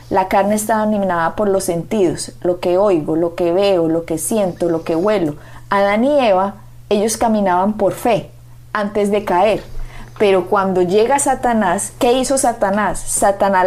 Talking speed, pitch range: 165 wpm, 180-230 Hz